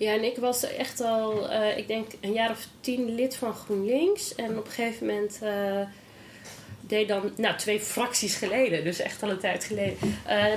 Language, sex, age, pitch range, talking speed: English, female, 20-39, 200-245 Hz, 200 wpm